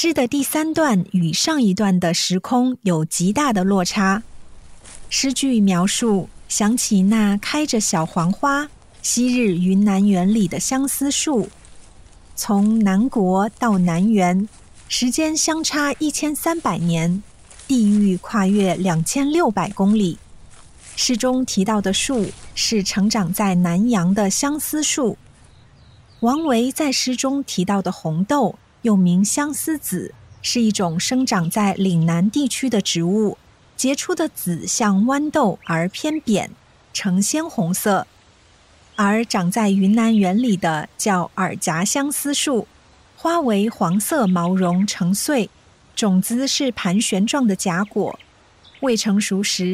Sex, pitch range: female, 185-255 Hz